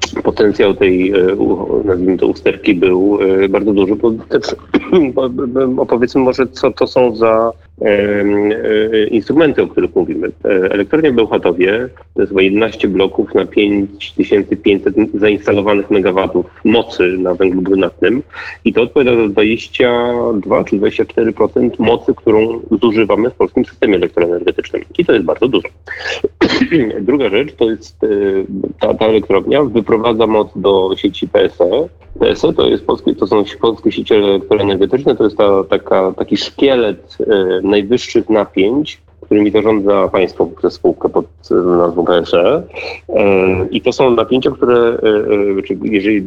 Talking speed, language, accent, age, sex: 130 wpm, Polish, native, 30-49, male